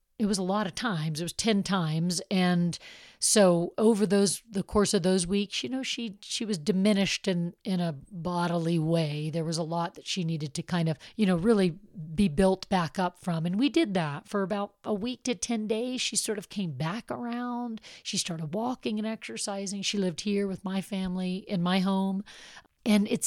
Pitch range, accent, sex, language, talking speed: 175-210 Hz, American, female, English, 210 wpm